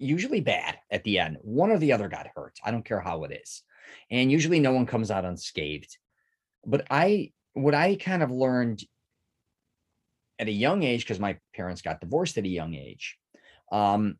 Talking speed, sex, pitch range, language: 190 wpm, male, 105-135 Hz, English